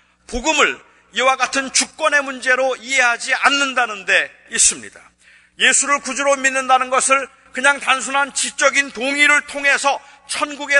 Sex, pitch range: male, 260-300 Hz